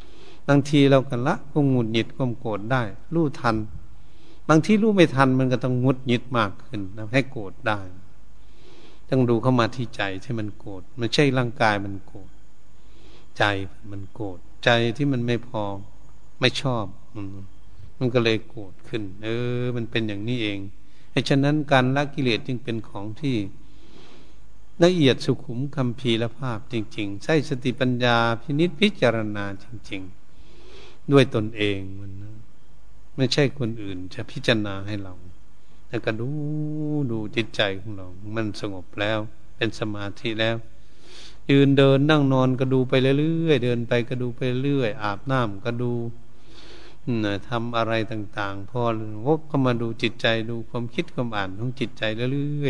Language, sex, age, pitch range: Thai, male, 70-89, 105-135 Hz